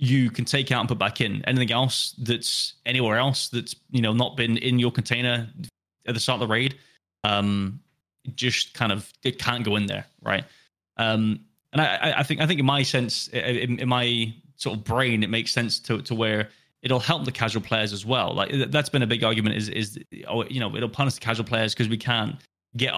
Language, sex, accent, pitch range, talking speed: English, male, British, 110-140 Hz, 220 wpm